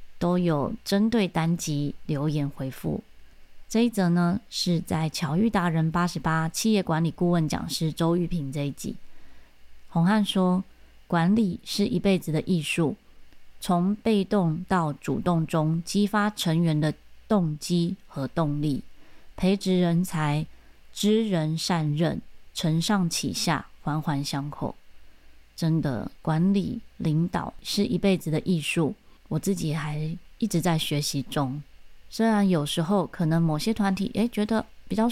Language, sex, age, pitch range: Chinese, female, 20-39, 155-200 Hz